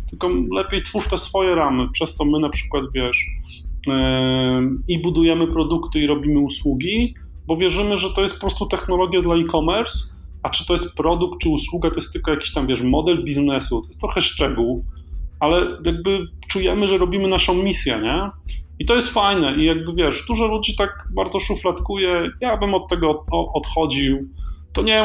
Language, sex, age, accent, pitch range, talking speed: Polish, male, 30-49, native, 130-175 Hz, 180 wpm